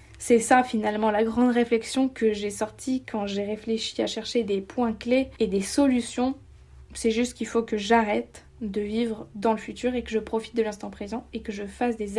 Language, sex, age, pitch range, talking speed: French, female, 20-39, 215-250 Hz, 210 wpm